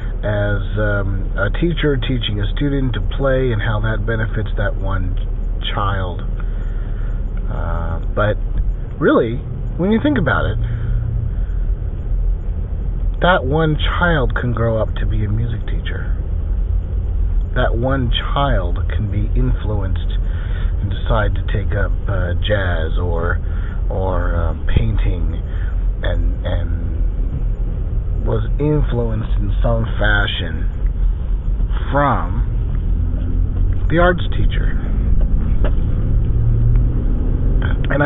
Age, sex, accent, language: 40-59, male, American, English